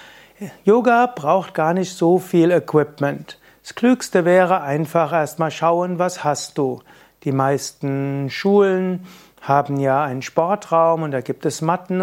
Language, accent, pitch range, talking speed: German, German, 145-170 Hz, 140 wpm